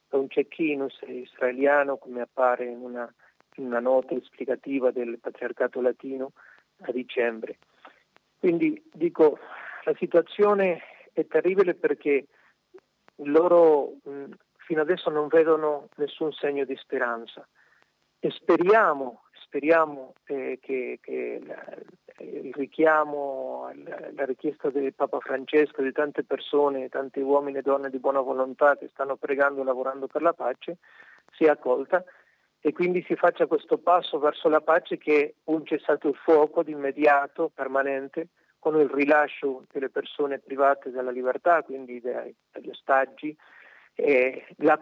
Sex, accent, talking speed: male, native, 130 wpm